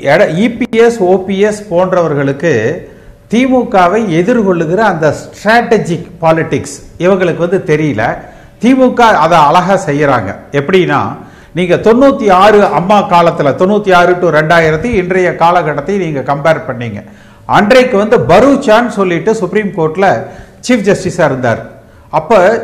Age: 50-69